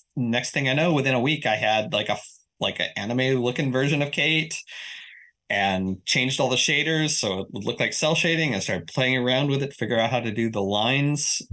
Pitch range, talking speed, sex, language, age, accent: 105-155 Hz, 225 wpm, male, English, 20-39, American